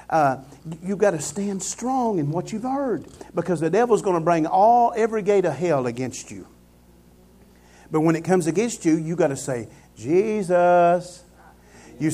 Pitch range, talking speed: 145-190 Hz, 175 wpm